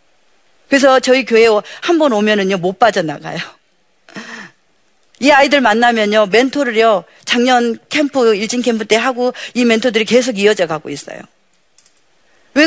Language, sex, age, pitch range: Korean, female, 40-59, 195-275 Hz